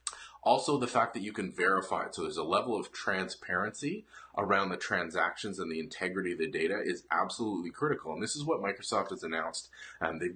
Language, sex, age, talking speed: English, male, 30-49, 205 wpm